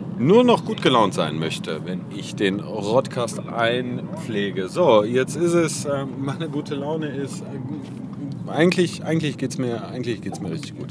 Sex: male